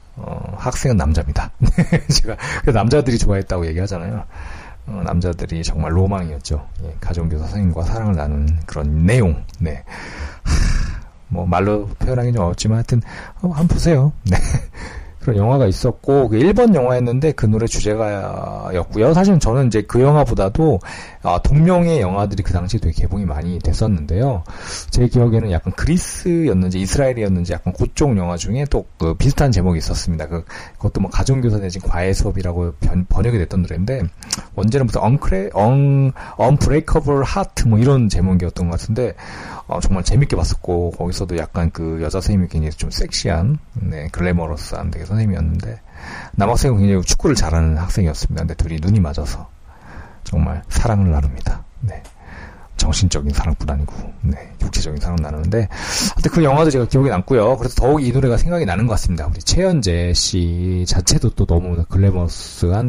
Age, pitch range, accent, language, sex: 40-59, 85-115 Hz, native, Korean, male